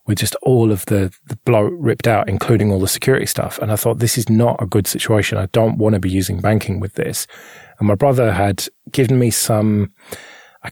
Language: English